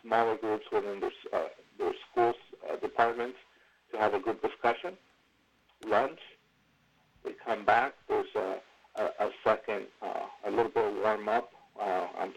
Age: 50-69